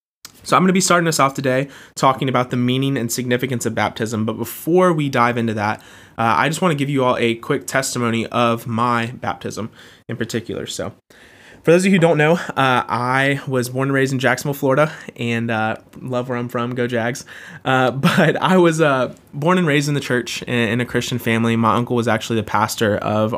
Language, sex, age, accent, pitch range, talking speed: English, male, 20-39, American, 110-130 Hz, 220 wpm